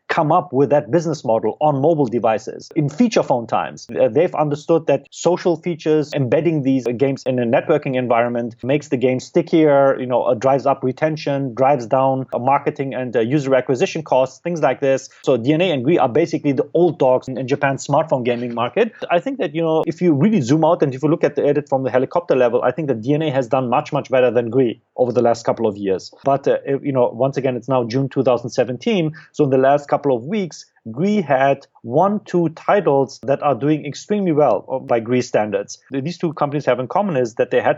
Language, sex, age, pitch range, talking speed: English, male, 30-49, 130-155 Hz, 215 wpm